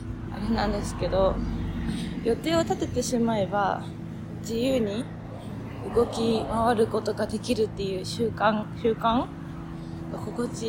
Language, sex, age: Japanese, female, 20-39